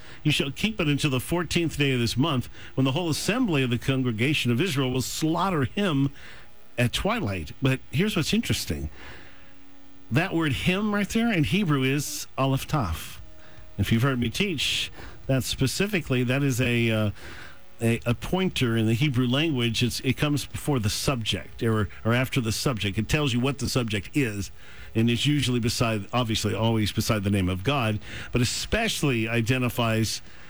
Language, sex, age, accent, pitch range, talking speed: English, male, 50-69, American, 110-145 Hz, 175 wpm